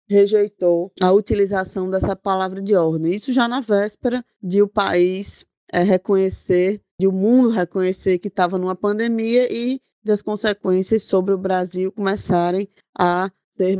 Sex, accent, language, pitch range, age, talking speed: female, Brazilian, Portuguese, 175-205 Hz, 20-39, 140 wpm